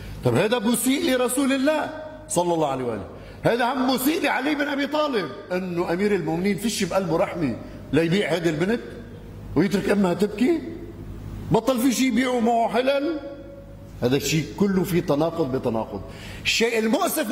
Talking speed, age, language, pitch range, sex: 145 wpm, 50-69, Arabic, 135-230 Hz, male